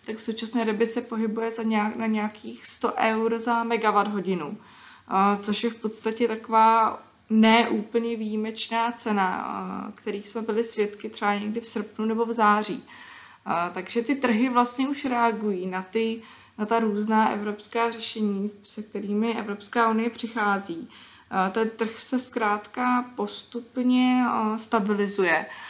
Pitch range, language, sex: 210-235 Hz, Czech, female